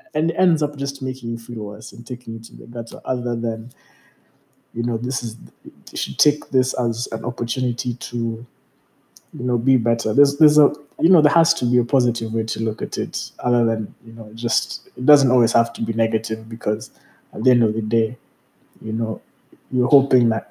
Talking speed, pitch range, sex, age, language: 215 wpm, 115-135 Hz, male, 20-39, English